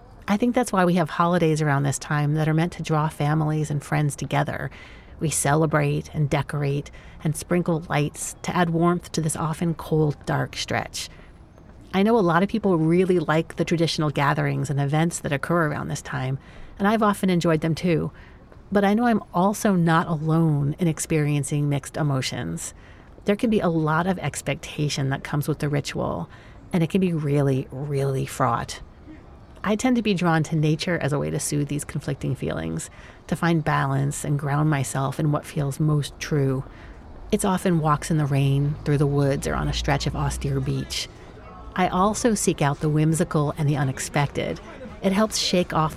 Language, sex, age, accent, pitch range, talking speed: English, female, 40-59, American, 140-170 Hz, 190 wpm